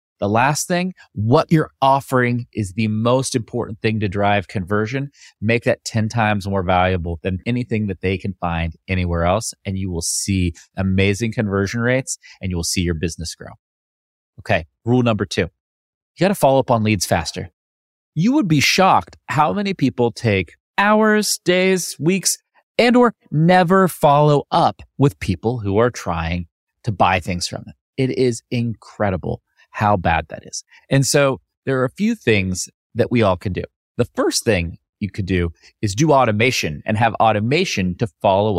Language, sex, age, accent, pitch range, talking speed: English, male, 30-49, American, 95-135 Hz, 175 wpm